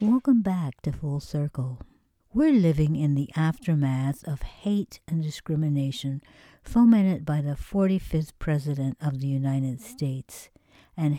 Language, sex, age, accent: English, female, 60-79, American